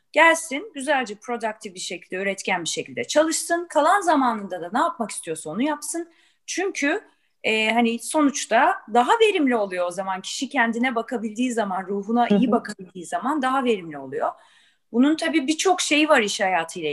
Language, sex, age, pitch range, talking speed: Turkish, female, 30-49, 180-260 Hz, 155 wpm